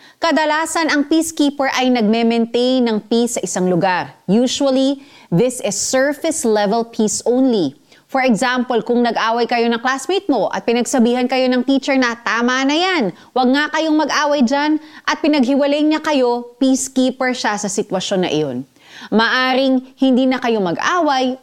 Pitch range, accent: 195-270 Hz, native